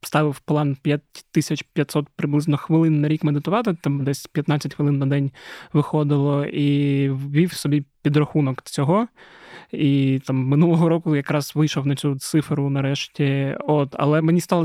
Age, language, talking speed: 20-39, Ukrainian, 145 wpm